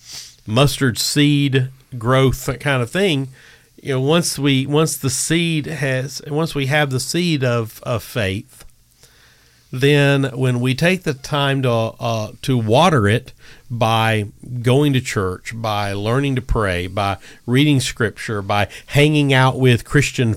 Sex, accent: male, American